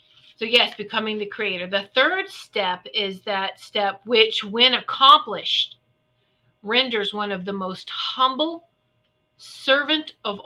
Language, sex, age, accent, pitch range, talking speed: English, female, 40-59, American, 175-245 Hz, 125 wpm